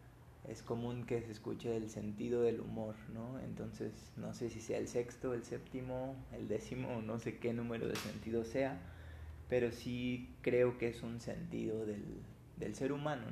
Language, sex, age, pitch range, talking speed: Spanish, male, 20-39, 115-130 Hz, 175 wpm